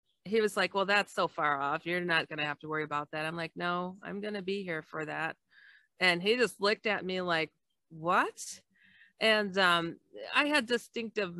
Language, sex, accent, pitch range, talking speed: English, female, American, 170-240 Hz, 210 wpm